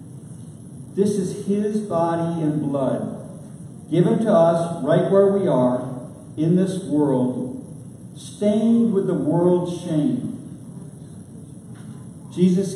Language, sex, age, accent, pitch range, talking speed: English, male, 50-69, American, 140-170 Hz, 105 wpm